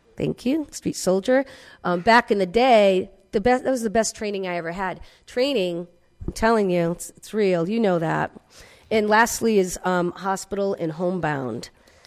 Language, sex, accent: English, female, American